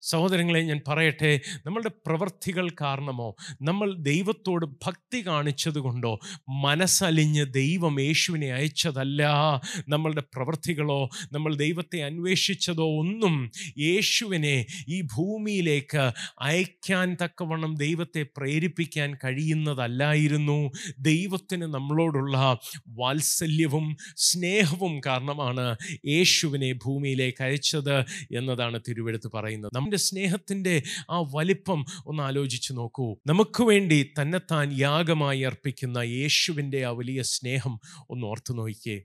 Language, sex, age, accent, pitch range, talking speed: Malayalam, male, 30-49, native, 135-170 Hz, 90 wpm